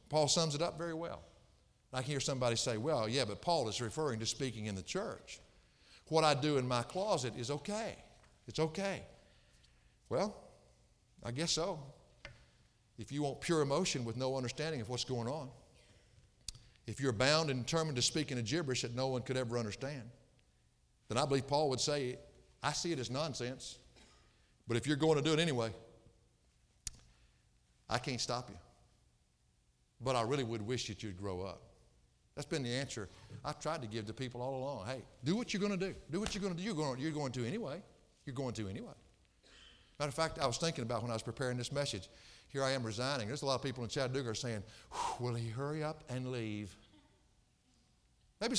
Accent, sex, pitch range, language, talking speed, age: American, male, 115-150 Hz, English, 200 wpm, 50-69